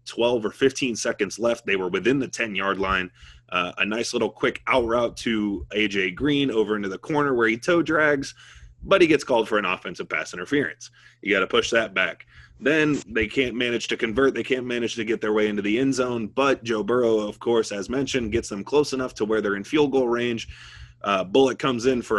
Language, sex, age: English, male, 20-39